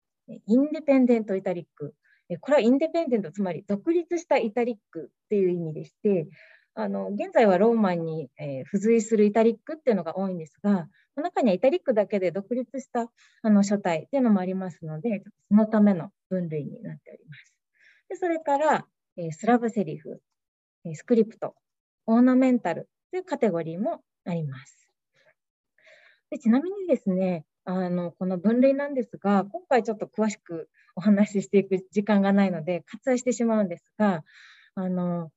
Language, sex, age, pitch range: Japanese, female, 20-39, 175-245 Hz